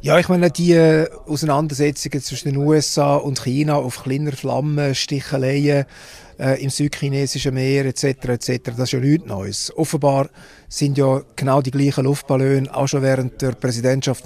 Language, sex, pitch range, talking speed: German, male, 120-140 Hz, 155 wpm